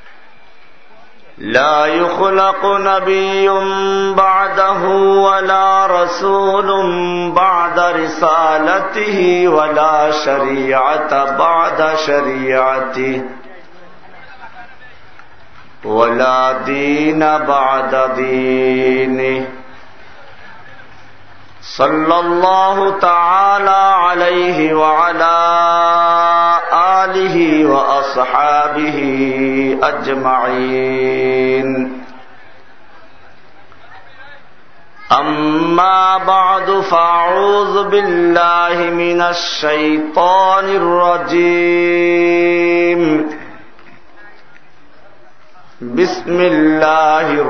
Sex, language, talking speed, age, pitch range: male, Bengali, 35 wpm, 50-69, 135-180 Hz